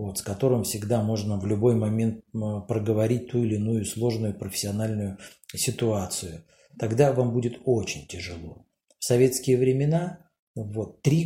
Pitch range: 105-140 Hz